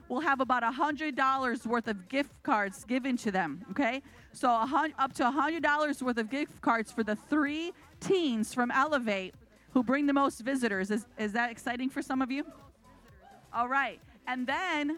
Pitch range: 235-285 Hz